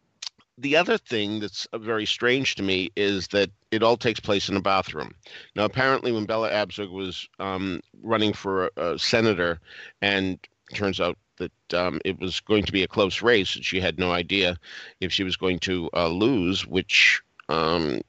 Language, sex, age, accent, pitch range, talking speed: English, male, 50-69, American, 90-110 Hz, 190 wpm